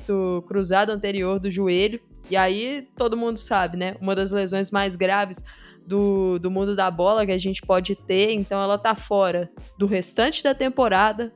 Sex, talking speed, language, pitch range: female, 175 wpm, Portuguese, 195-250 Hz